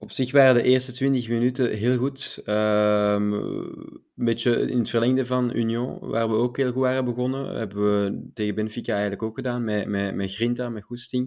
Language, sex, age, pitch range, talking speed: Dutch, male, 20-39, 105-120 Hz, 195 wpm